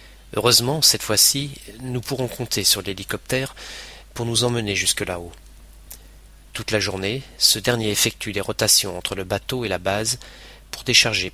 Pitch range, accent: 95-120 Hz, French